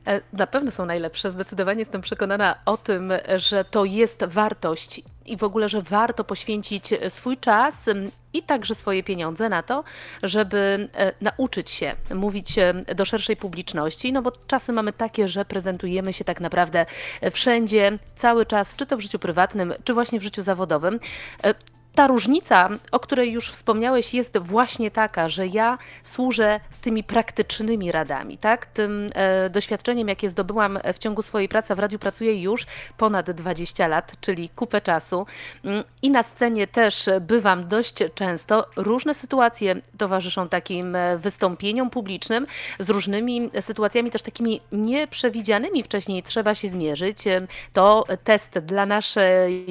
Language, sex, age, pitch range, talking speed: Polish, female, 30-49, 185-225 Hz, 140 wpm